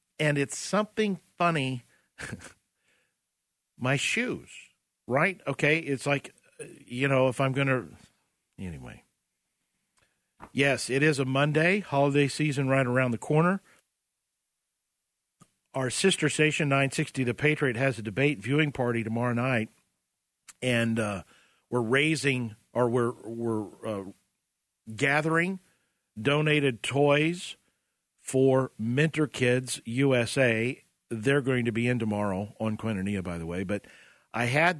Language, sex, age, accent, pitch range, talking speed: English, male, 50-69, American, 120-150 Hz, 120 wpm